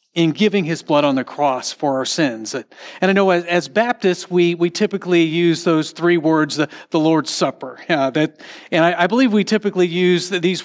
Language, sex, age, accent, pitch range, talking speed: English, male, 40-59, American, 150-190 Hz, 210 wpm